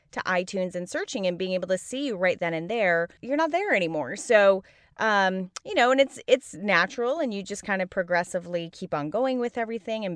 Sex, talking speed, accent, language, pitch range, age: female, 225 wpm, American, English, 170-250 Hz, 20-39